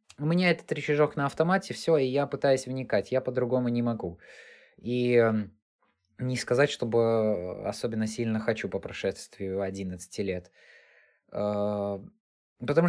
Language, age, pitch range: Russian, 20-39, 110-140 Hz